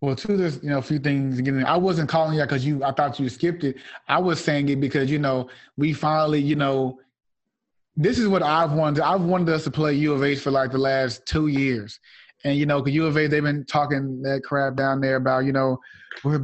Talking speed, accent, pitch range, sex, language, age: 250 wpm, American, 130-155 Hz, male, English, 20-39